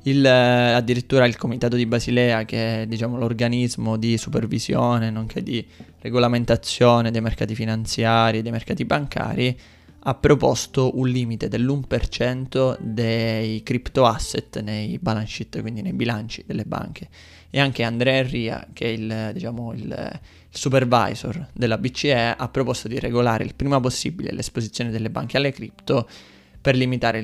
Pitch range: 110-125 Hz